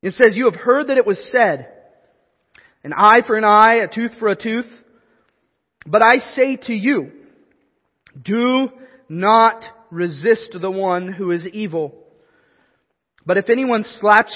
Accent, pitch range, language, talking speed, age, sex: American, 155-220 Hz, English, 150 wpm, 30-49, male